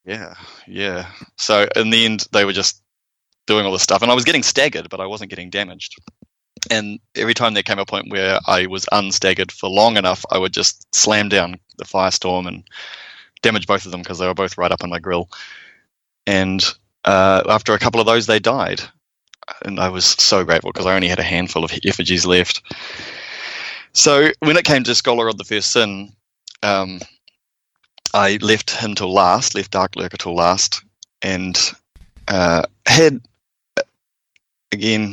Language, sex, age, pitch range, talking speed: English, male, 20-39, 90-105 Hz, 180 wpm